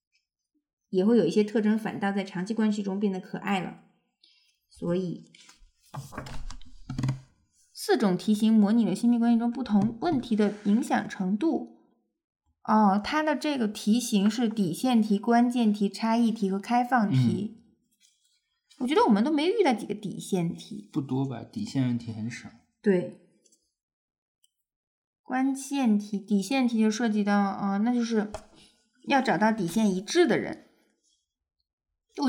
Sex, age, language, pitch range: female, 20-39, Chinese, 200-255 Hz